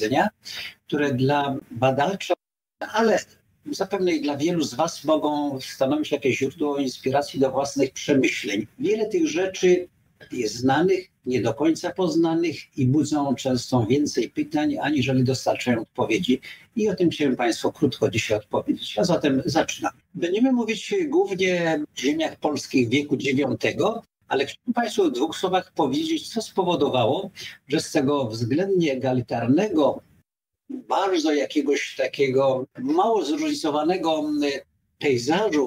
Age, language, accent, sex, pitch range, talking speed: 50-69, Polish, native, male, 135-190 Hz, 125 wpm